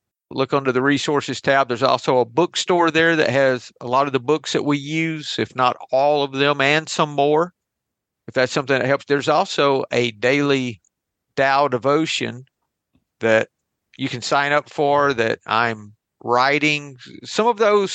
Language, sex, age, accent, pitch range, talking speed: English, male, 50-69, American, 120-160 Hz, 170 wpm